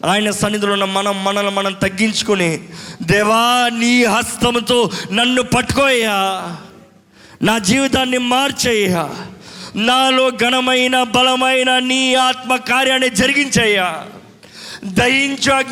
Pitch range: 200-275 Hz